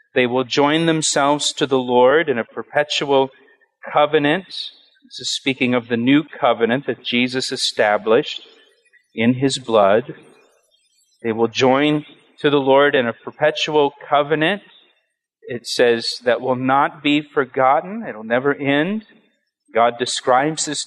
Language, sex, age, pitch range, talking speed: English, male, 40-59, 120-150 Hz, 140 wpm